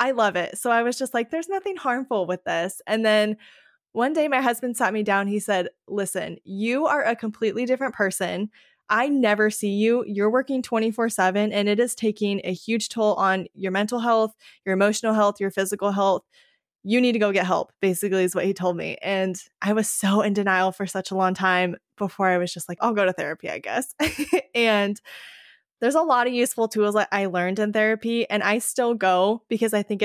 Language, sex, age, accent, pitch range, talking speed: English, female, 20-39, American, 190-230 Hz, 220 wpm